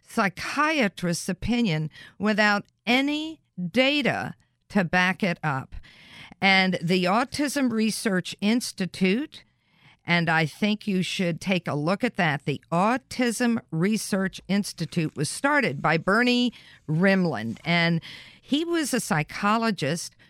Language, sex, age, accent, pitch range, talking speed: English, female, 50-69, American, 165-225 Hz, 110 wpm